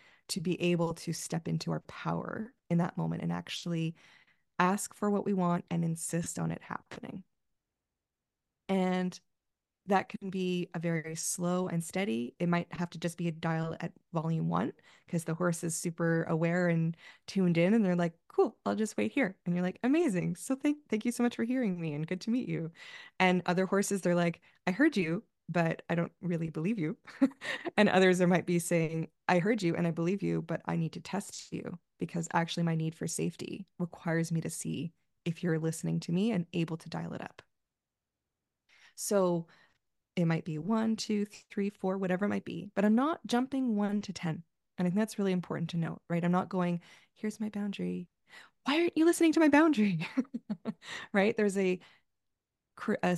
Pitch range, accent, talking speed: 165-205 Hz, American, 200 wpm